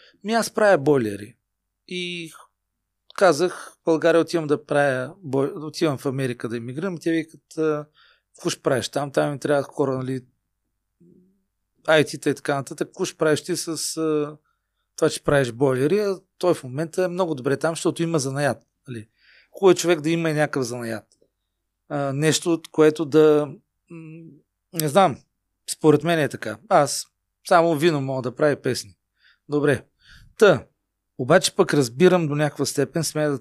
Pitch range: 135-160 Hz